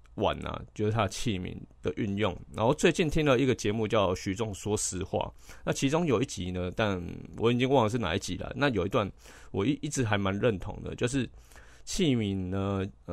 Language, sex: Chinese, male